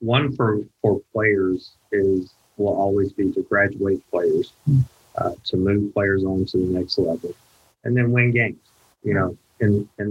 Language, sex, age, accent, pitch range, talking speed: English, male, 30-49, American, 95-110 Hz, 165 wpm